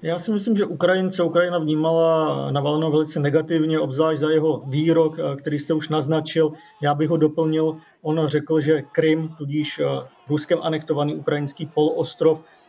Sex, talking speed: male, 145 wpm